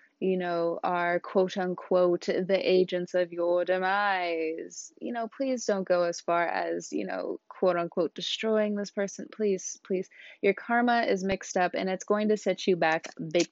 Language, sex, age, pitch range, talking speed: English, female, 20-39, 170-200 Hz, 170 wpm